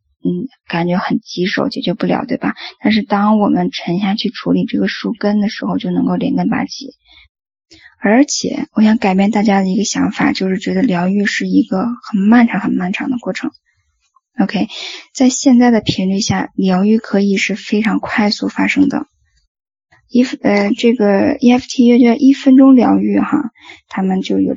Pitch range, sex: 200-265 Hz, female